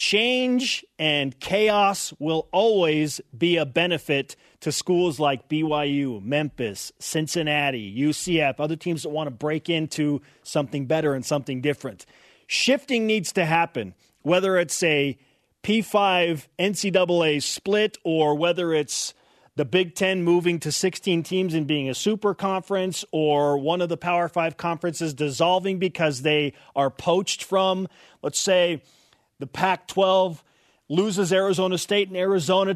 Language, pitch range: English, 150-190 Hz